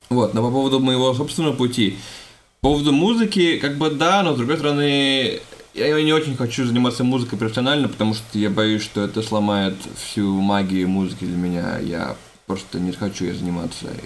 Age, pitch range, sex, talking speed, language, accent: 20-39, 95-120 Hz, male, 180 wpm, Russian, native